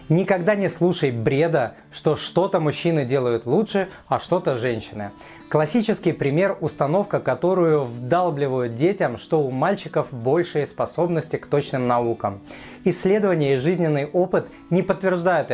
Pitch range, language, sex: 140-180 Hz, Russian, male